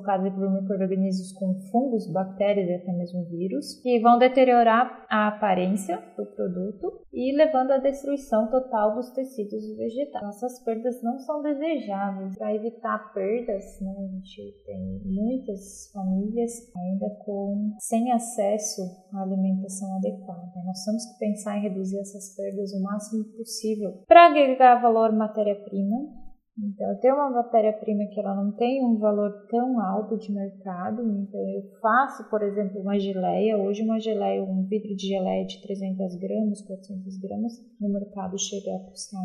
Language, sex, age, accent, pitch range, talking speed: Portuguese, female, 10-29, Brazilian, 190-220 Hz, 155 wpm